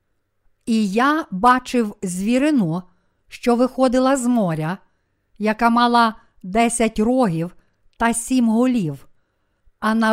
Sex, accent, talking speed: female, native, 100 wpm